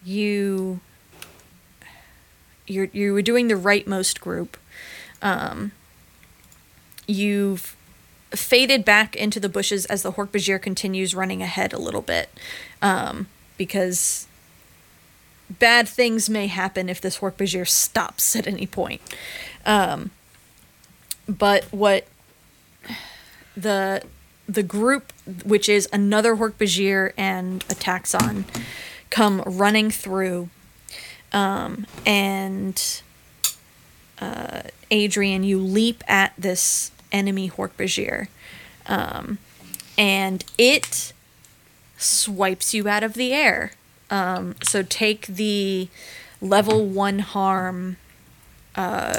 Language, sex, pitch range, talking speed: English, female, 185-210 Hz, 100 wpm